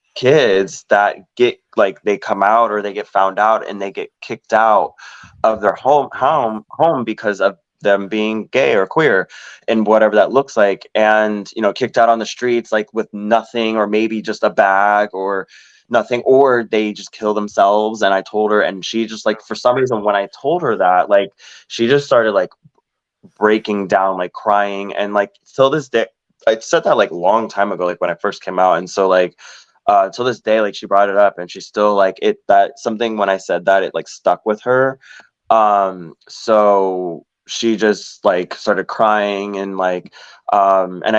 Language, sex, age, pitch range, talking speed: English, male, 20-39, 95-115 Hz, 205 wpm